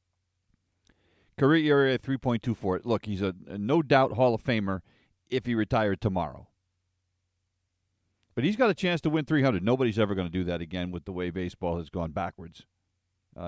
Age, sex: 50-69, male